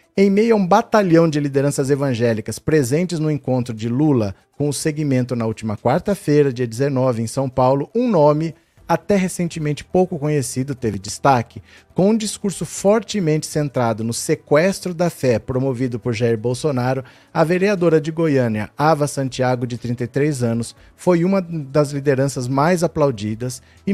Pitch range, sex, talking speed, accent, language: 130-160 Hz, male, 155 wpm, Brazilian, Portuguese